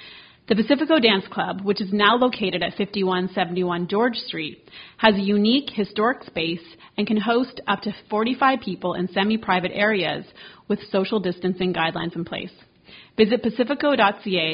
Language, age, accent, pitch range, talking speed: English, 30-49, American, 185-225 Hz, 145 wpm